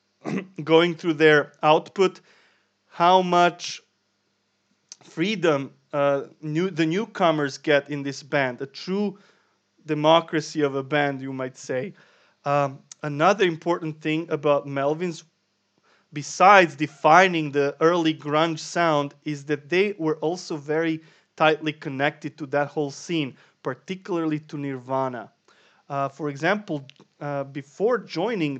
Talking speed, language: 115 wpm, English